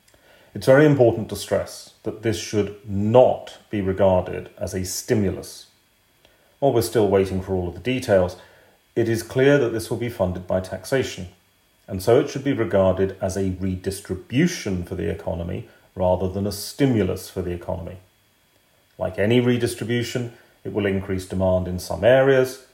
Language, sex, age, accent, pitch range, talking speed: English, male, 40-59, British, 95-115 Hz, 165 wpm